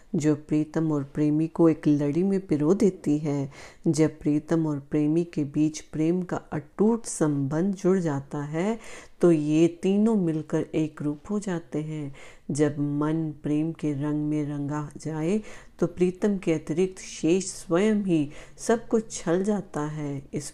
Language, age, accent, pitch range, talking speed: Hindi, 40-59, native, 150-175 Hz, 160 wpm